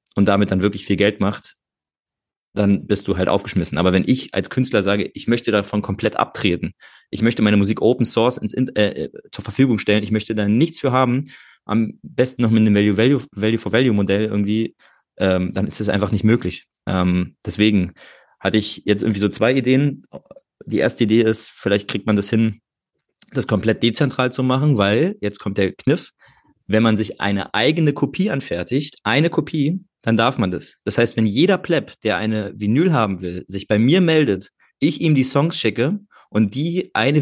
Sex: male